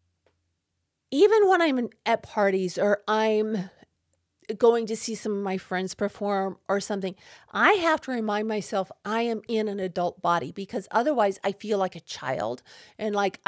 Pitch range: 190-230 Hz